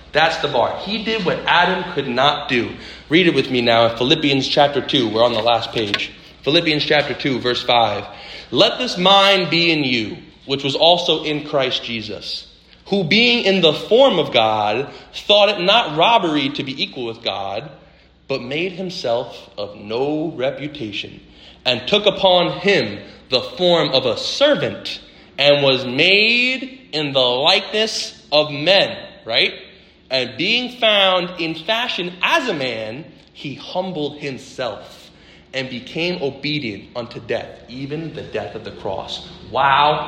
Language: English